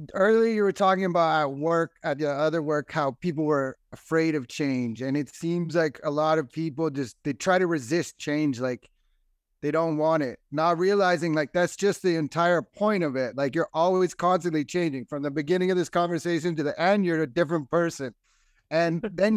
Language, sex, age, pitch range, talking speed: English, male, 30-49, 155-190 Hz, 205 wpm